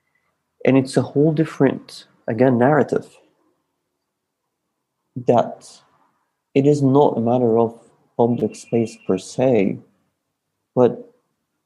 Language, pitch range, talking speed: English, 115-140 Hz, 100 wpm